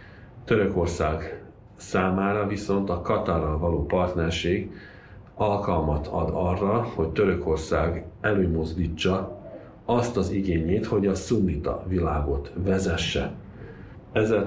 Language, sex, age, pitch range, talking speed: Hungarian, male, 50-69, 85-100 Hz, 90 wpm